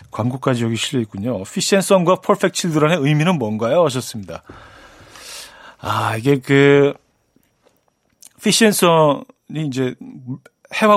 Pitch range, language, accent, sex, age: 120-180 Hz, Korean, native, male, 40-59